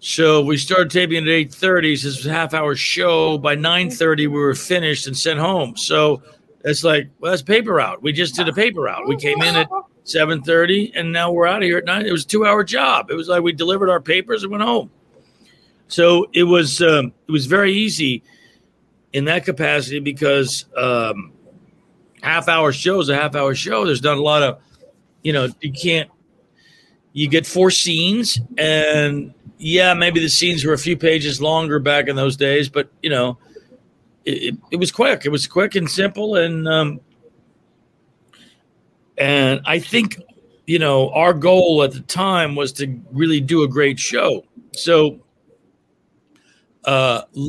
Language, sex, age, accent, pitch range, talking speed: English, male, 50-69, American, 145-175 Hz, 180 wpm